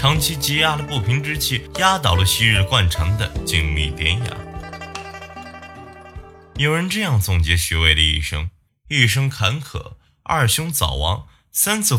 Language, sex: Chinese, male